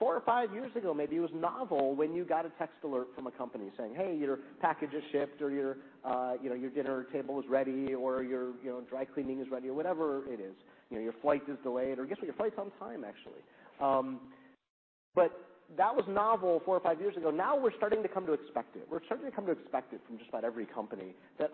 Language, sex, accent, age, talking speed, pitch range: English, male, American, 30-49, 255 wpm, 130-185 Hz